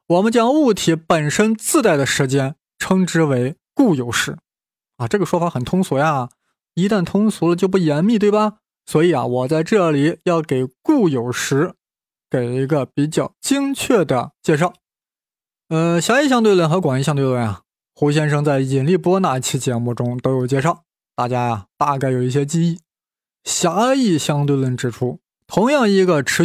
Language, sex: Chinese, male